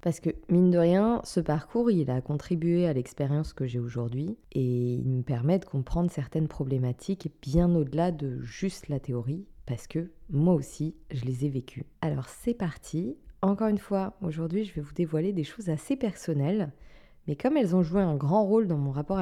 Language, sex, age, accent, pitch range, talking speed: French, female, 20-39, French, 135-180 Hz, 195 wpm